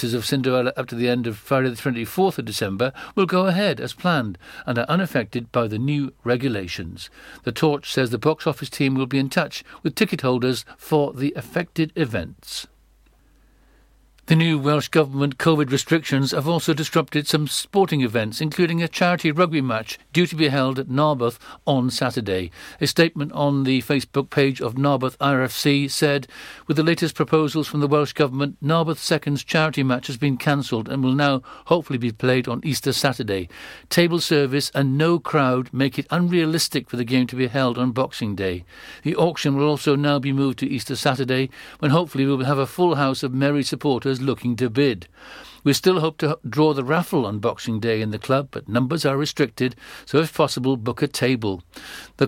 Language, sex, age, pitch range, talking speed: English, male, 60-79, 125-150 Hz, 190 wpm